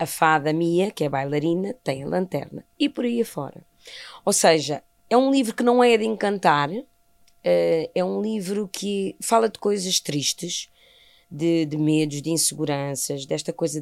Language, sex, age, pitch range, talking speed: Portuguese, female, 20-39, 150-190 Hz, 165 wpm